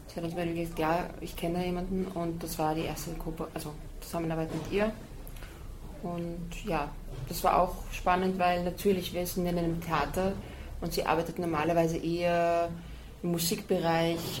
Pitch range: 160-175 Hz